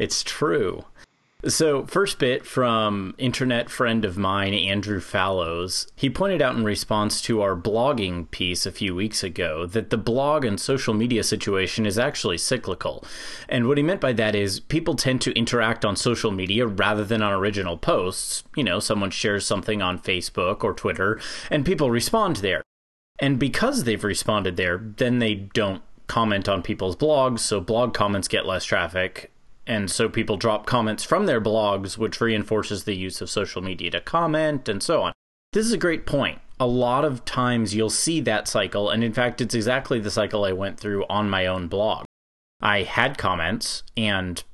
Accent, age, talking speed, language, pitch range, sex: American, 30-49, 185 wpm, English, 95-120 Hz, male